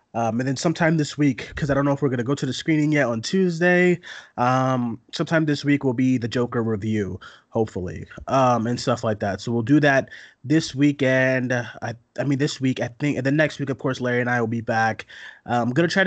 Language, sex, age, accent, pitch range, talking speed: English, male, 20-39, American, 115-145 Hz, 245 wpm